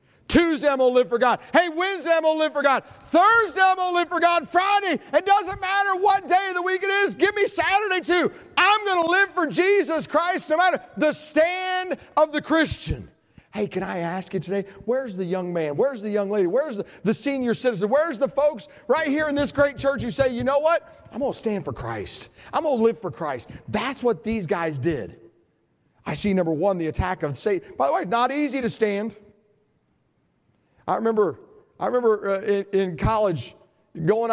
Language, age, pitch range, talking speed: English, 40-59, 195-295 Hz, 220 wpm